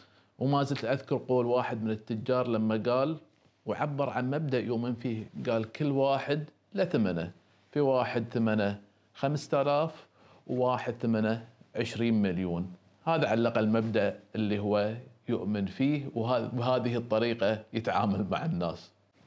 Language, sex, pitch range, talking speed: Arabic, male, 110-135 Hz, 120 wpm